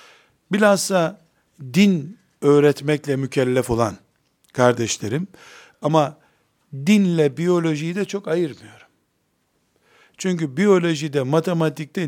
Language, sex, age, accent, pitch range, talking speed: Turkish, male, 60-79, native, 130-170 Hz, 80 wpm